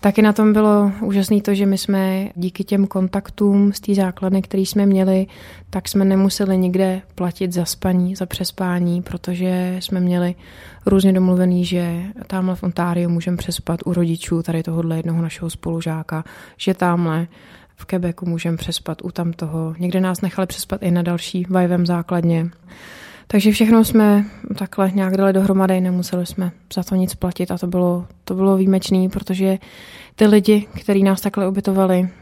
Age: 20-39